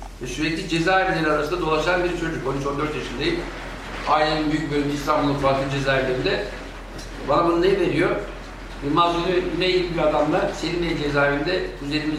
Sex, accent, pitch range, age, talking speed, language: male, native, 145-180 Hz, 60-79, 135 wpm, Turkish